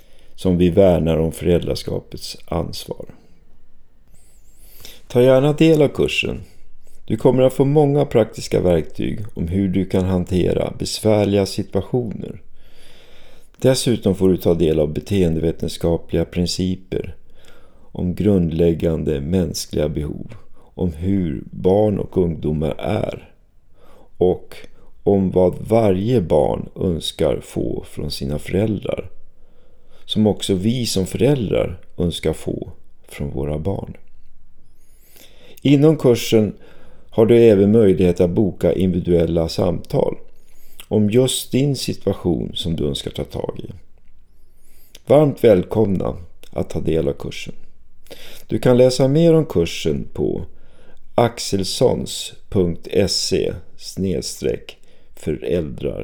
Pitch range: 85-110 Hz